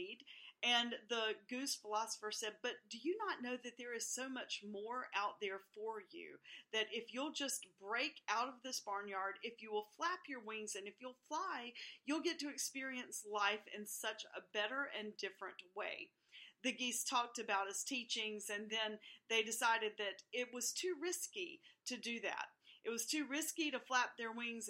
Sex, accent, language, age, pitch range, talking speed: female, American, English, 40-59, 210-255 Hz, 185 wpm